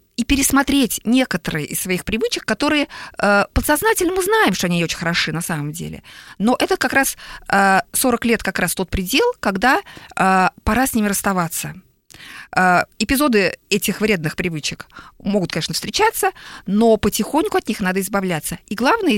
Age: 20-39